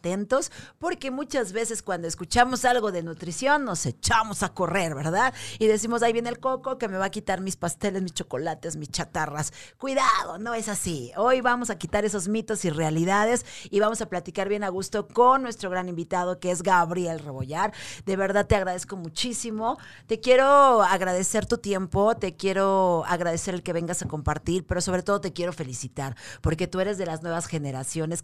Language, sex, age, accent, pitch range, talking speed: Spanish, female, 40-59, Mexican, 165-220 Hz, 190 wpm